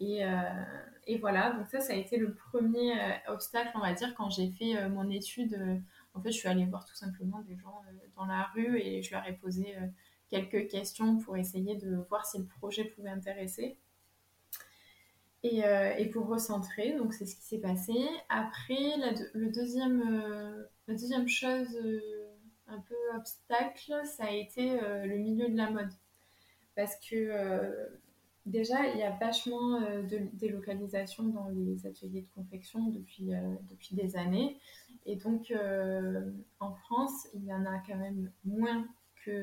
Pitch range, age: 195-235 Hz, 20-39